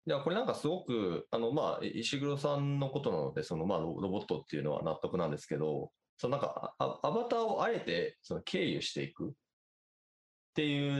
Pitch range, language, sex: 95-155 Hz, Japanese, male